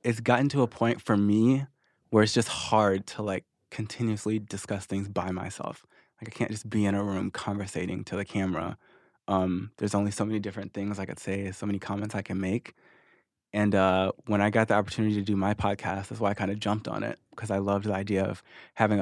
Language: English